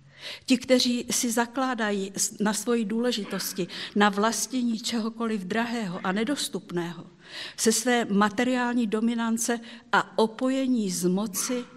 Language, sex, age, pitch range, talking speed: Czech, female, 50-69, 180-230 Hz, 105 wpm